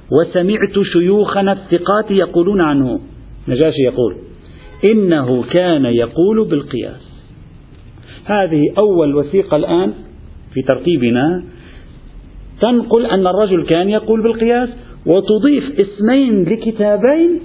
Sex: male